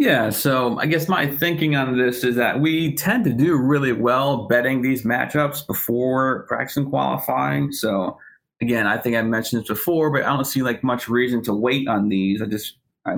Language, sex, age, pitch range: English, male, 30-49, 115-135 Hz